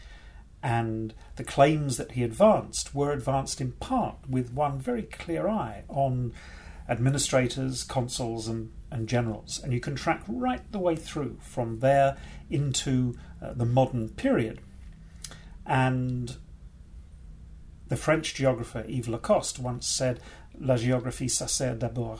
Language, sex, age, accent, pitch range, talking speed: English, male, 40-59, British, 110-135 Hz, 135 wpm